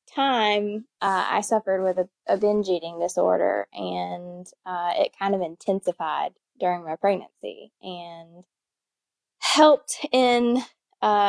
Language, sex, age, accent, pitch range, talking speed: English, female, 20-39, American, 185-220 Hz, 120 wpm